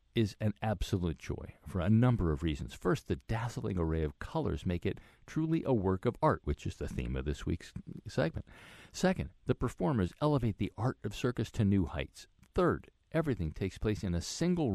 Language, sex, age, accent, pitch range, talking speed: English, male, 50-69, American, 90-125 Hz, 195 wpm